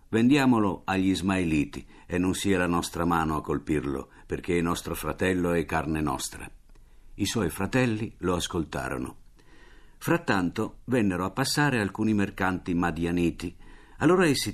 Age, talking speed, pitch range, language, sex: 50-69, 130 wpm, 85-110 Hz, Italian, male